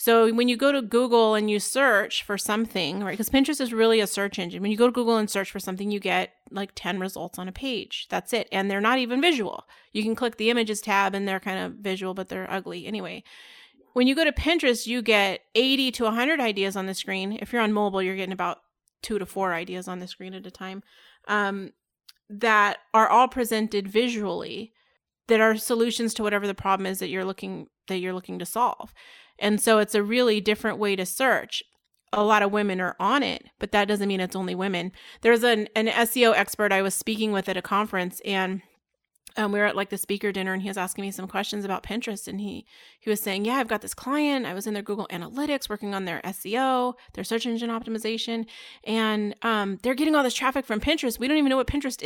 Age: 30-49